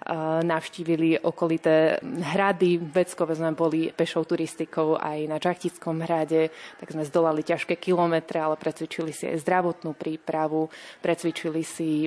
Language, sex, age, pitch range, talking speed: Slovak, female, 20-39, 160-180 Hz, 130 wpm